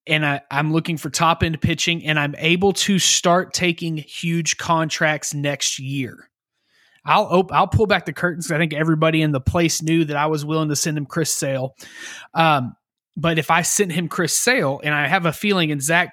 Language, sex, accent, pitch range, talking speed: English, male, American, 150-175 Hz, 200 wpm